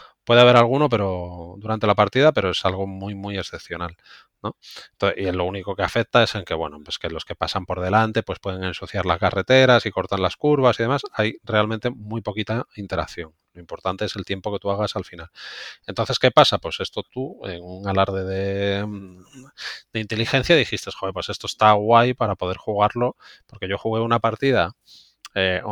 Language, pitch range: Spanish, 100-120 Hz